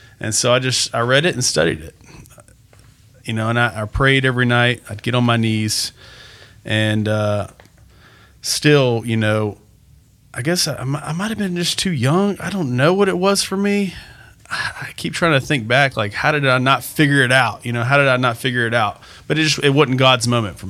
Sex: male